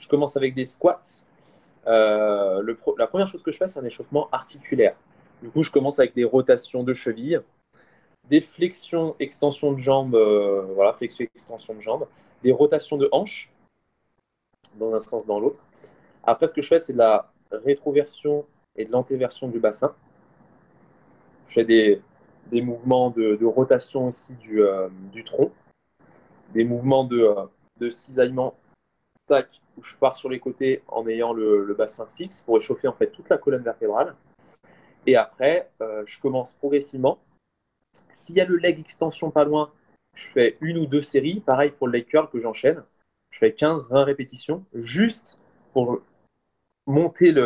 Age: 20-39